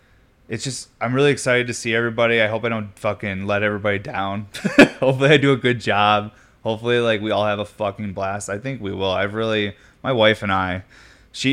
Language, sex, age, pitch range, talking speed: English, male, 20-39, 100-115 Hz, 215 wpm